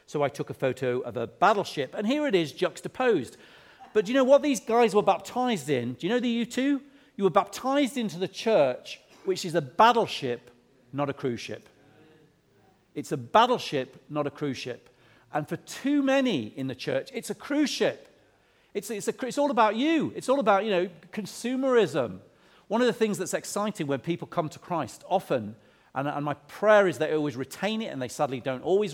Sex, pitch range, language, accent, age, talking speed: male, 140-205 Hz, English, British, 40-59, 205 wpm